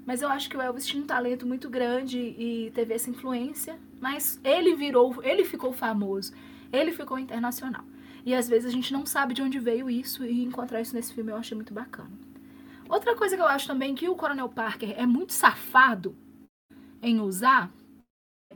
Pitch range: 230-285 Hz